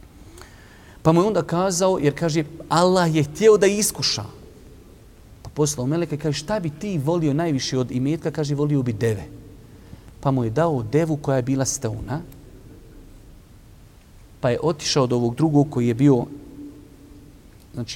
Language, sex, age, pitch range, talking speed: English, male, 40-59, 115-150 Hz, 155 wpm